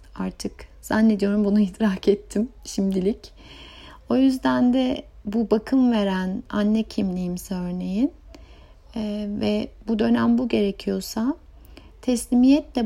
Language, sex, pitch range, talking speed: Turkish, female, 200-235 Hz, 105 wpm